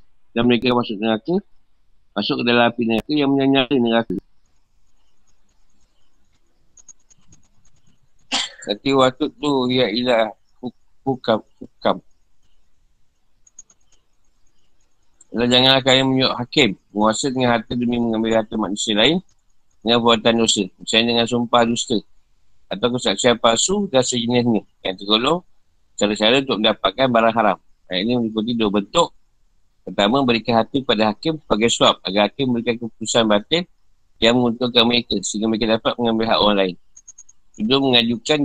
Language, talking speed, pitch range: Malay, 130 wpm, 105-125 Hz